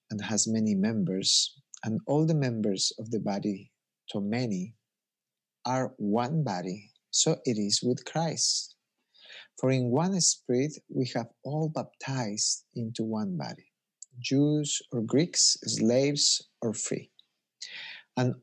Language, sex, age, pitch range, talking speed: English, male, 50-69, 110-140 Hz, 125 wpm